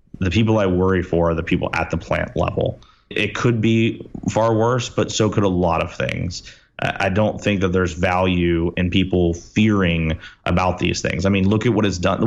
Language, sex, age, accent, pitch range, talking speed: English, male, 30-49, American, 90-105 Hz, 205 wpm